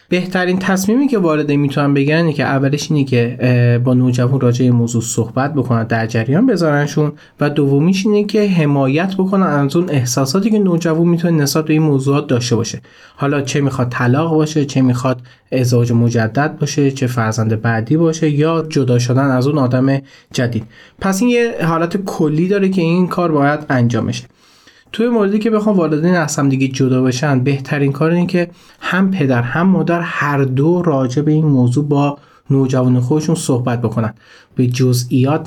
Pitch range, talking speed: 125-160 Hz, 170 wpm